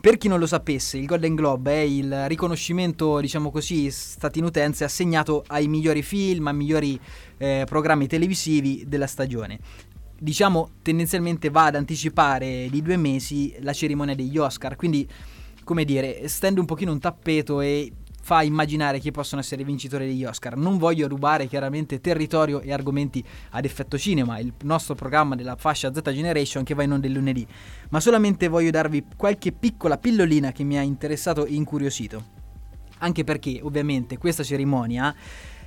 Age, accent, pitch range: 20-39, native, 135-165 Hz